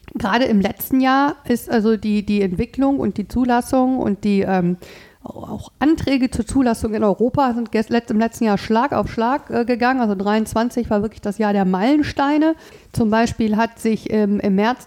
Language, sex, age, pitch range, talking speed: German, female, 50-69, 215-260 Hz, 190 wpm